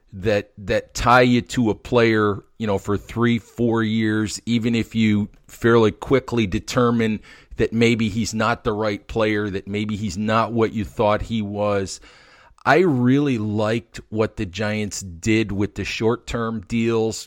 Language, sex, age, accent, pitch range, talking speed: English, male, 40-59, American, 105-120 Hz, 160 wpm